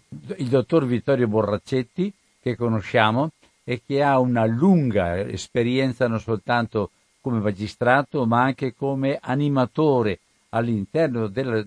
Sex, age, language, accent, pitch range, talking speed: male, 60-79, Italian, native, 110-140 Hz, 110 wpm